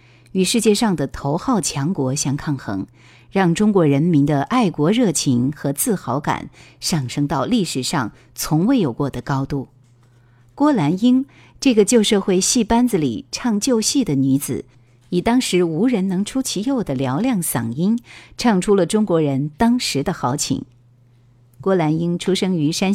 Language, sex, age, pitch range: Chinese, female, 50-69, 135-205 Hz